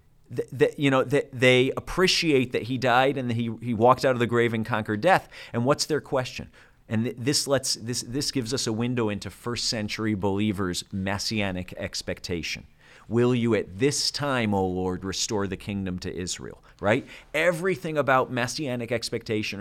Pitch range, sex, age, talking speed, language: 100-125 Hz, male, 40-59, 175 wpm, English